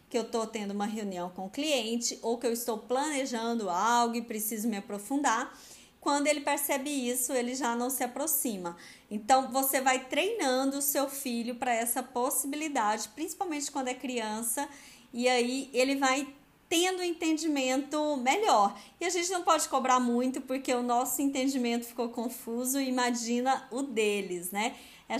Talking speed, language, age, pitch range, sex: 160 wpm, Portuguese, 20-39, 235-280 Hz, female